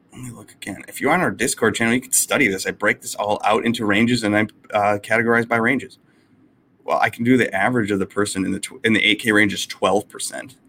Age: 30-49